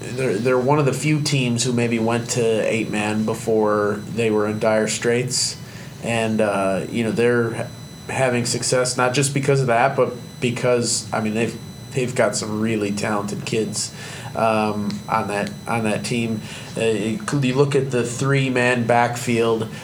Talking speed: 170 wpm